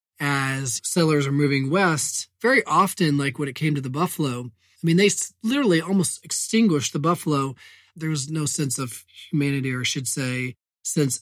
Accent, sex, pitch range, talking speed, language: American, male, 135-180 Hz, 175 wpm, English